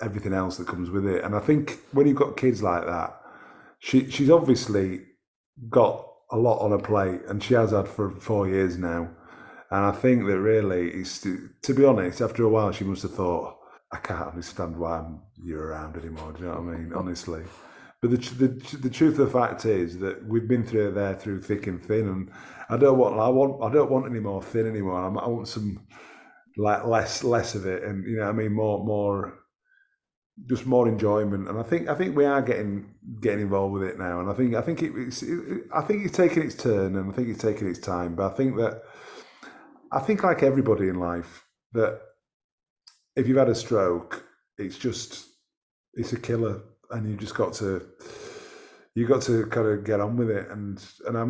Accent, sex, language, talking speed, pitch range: British, male, English, 210 wpm, 95-125 Hz